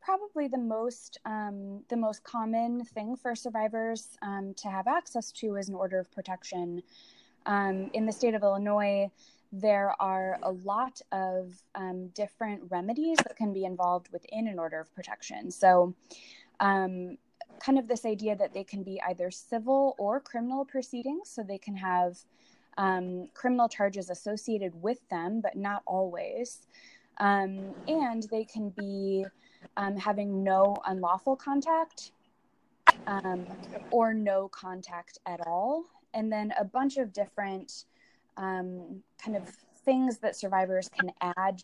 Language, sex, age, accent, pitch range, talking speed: English, female, 20-39, American, 185-230 Hz, 145 wpm